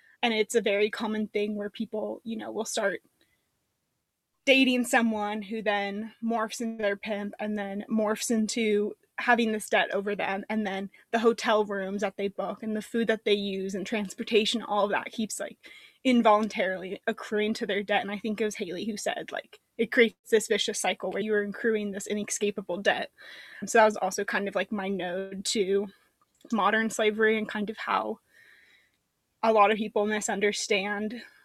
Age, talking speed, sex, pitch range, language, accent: 20-39, 185 wpm, female, 205-235 Hz, English, American